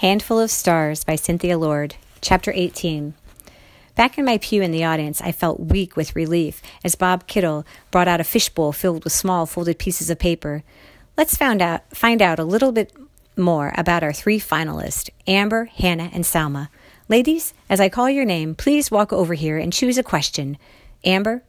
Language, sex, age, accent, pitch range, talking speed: English, female, 40-59, American, 160-200 Hz, 185 wpm